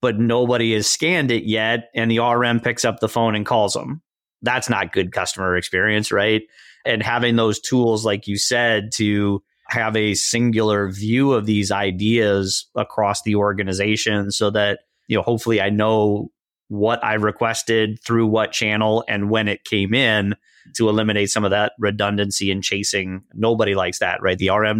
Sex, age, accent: male, 30-49, American